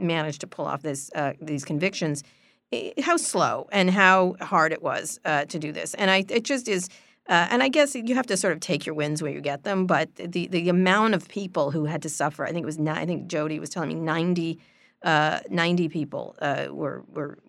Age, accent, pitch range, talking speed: 40-59, American, 150-185 Hz, 225 wpm